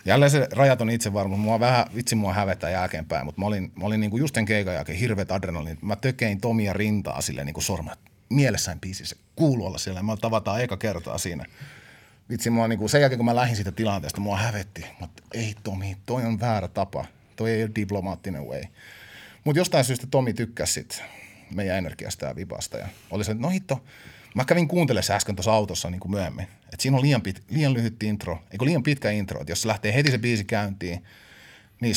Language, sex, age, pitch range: Finnish, male, 30-49, 95-115 Hz